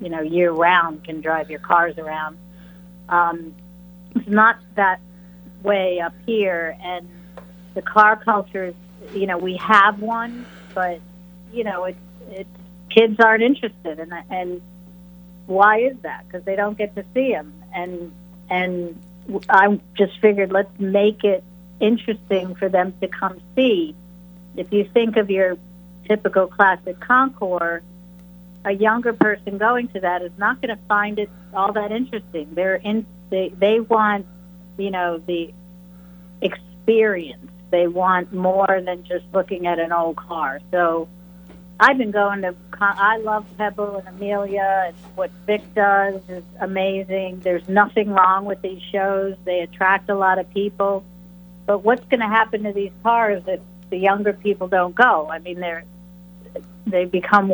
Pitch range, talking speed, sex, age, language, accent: 180-205 Hz, 155 wpm, female, 50-69, English, American